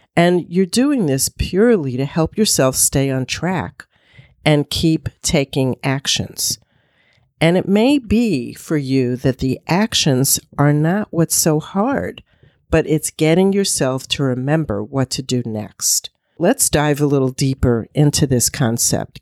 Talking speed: 145 wpm